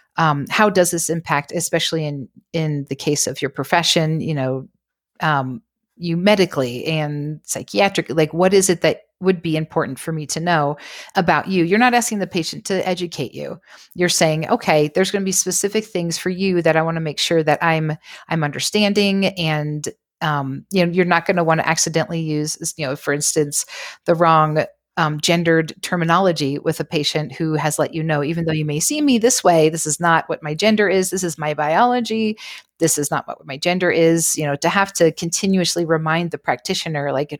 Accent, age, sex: American, 40-59, female